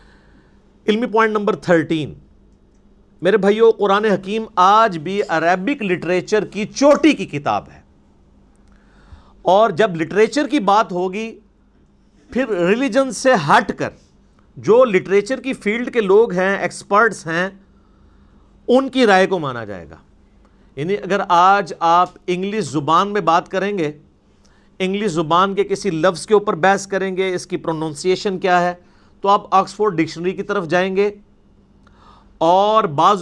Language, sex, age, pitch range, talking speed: Urdu, male, 50-69, 165-210 Hz, 145 wpm